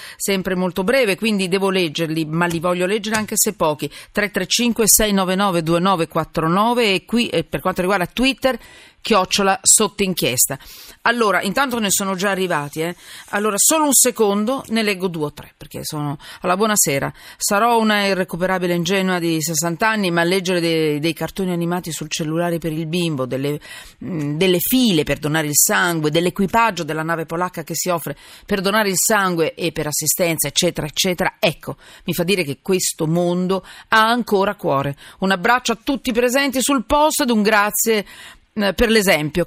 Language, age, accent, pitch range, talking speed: Italian, 40-59, native, 165-215 Hz, 165 wpm